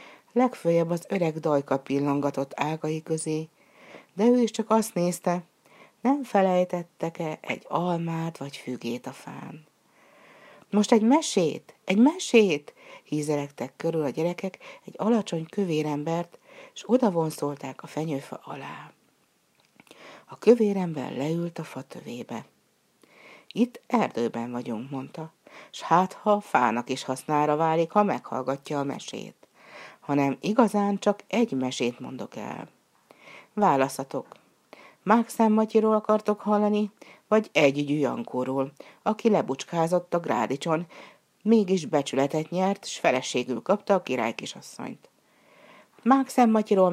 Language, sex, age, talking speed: Hungarian, female, 60-79, 110 wpm